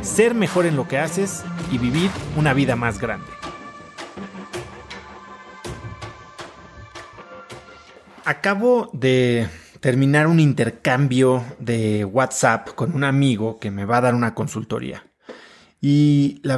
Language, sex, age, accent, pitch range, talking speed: Spanish, male, 30-49, Mexican, 115-145 Hz, 110 wpm